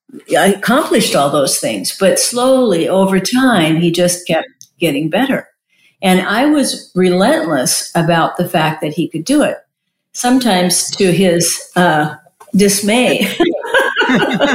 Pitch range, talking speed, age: 170-220 Hz, 125 wpm, 50-69